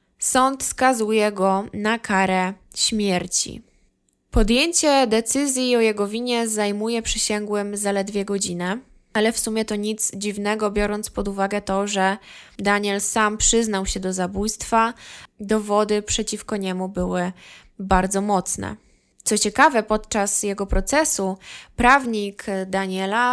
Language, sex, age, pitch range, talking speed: Polish, female, 20-39, 195-225 Hz, 115 wpm